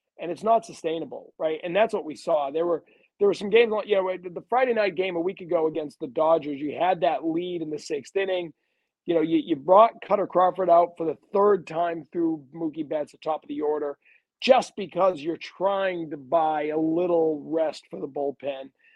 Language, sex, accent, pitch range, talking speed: English, male, American, 160-205 Hz, 215 wpm